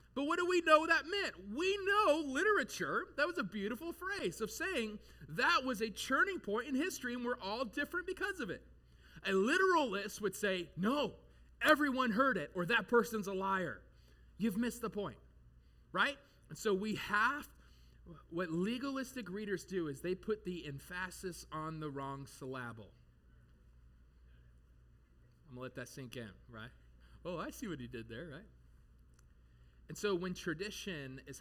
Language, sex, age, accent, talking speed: English, male, 30-49, American, 165 wpm